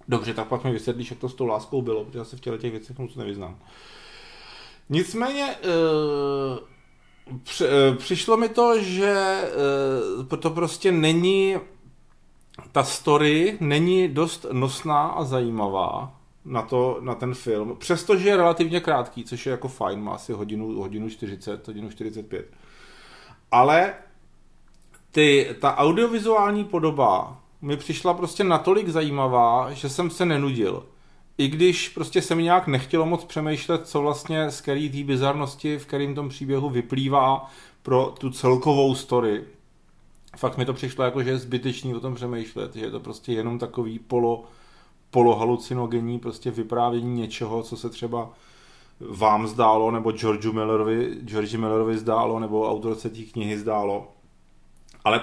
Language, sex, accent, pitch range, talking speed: Czech, male, native, 115-155 Hz, 140 wpm